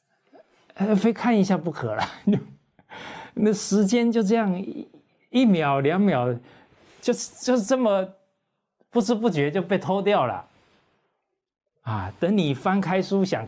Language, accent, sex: Chinese, native, male